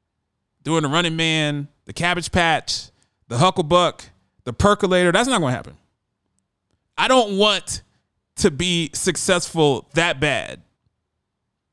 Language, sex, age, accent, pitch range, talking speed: English, male, 30-49, American, 110-185 Hz, 125 wpm